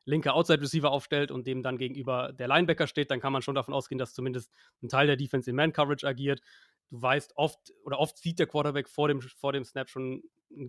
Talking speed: 225 wpm